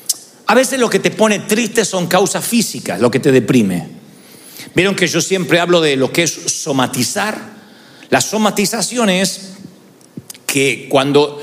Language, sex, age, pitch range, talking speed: Spanish, male, 50-69, 150-210 Hz, 150 wpm